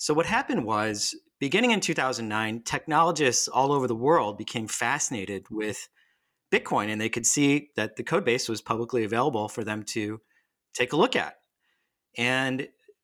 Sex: male